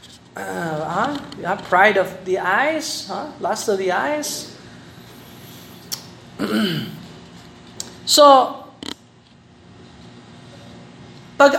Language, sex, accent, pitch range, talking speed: Filipino, male, native, 185-260 Hz, 80 wpm